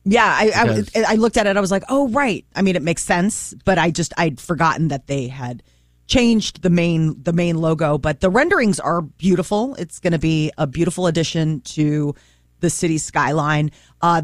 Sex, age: female, 30-49